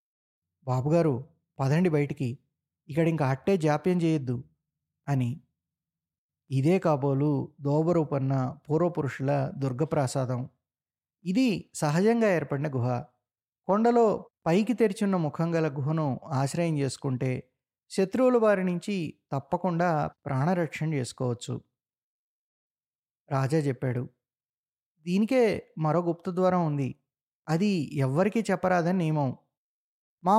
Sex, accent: male, native